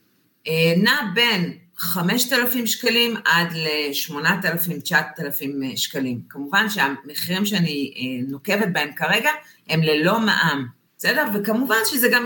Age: 40-59